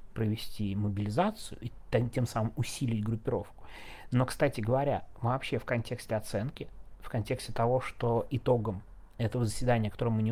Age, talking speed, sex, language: 30-49, 140 wpm, male, Russian